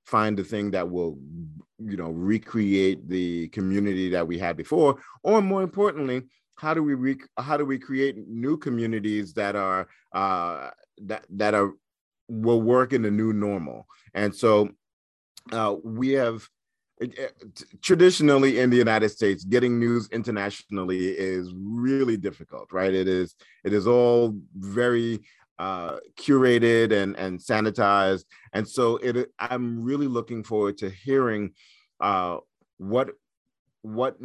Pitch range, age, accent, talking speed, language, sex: 95-120 Hz, 40-59, American, 140 wpm, English, male